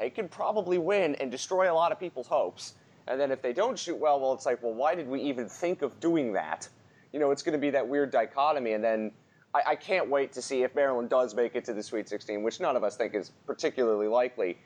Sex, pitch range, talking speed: male, 115-165 Hz, 260 wpm